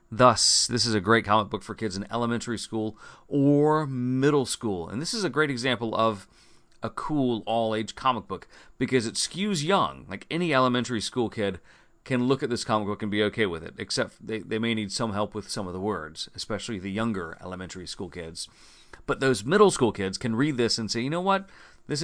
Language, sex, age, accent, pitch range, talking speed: English, male, 40-59, American, 105-130 Hz, 215 wpm